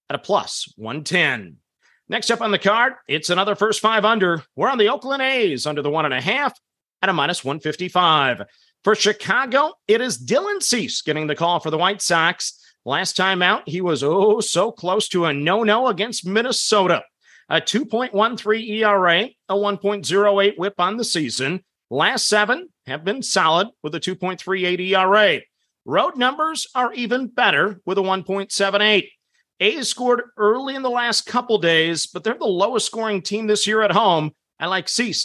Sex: male